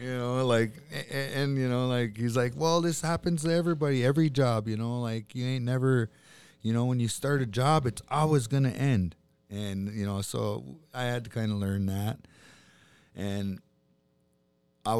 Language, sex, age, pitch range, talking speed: English, male, 20-39, 95-120 Hz, 190 wpm